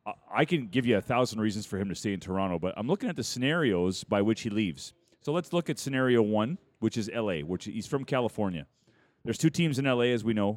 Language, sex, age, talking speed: English, male, 40-59, 250 wpm